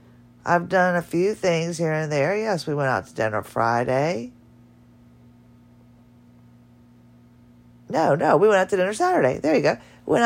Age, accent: 40-59, American